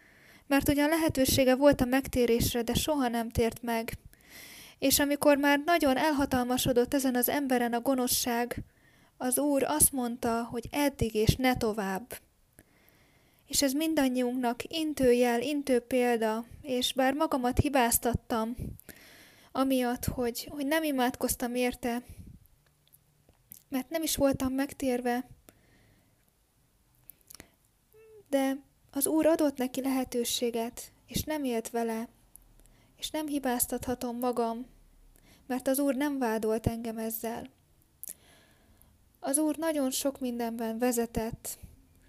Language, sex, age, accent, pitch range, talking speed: Romanian, female, 10-29, Finnish, 235-280 Hz, 110 wpm